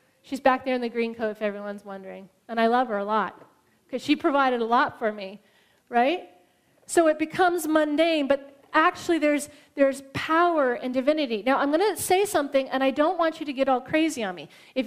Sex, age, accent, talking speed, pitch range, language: female, 30-49, American, 215 wpm, 250-310 Hz, English